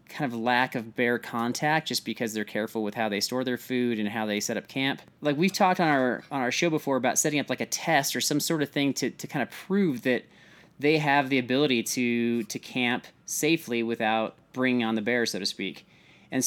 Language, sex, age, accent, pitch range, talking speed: English, male, 30-49, American, 115-145 Hz, 235 wpm